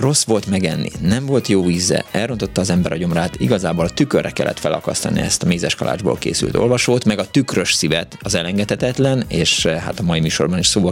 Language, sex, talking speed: Hungarian, male, 190 wpm